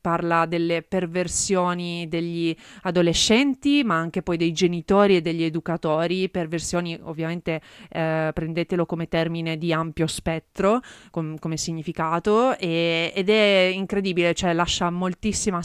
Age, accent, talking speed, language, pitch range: 30-49, native, 115 wpm, Italian, 170-195 Hz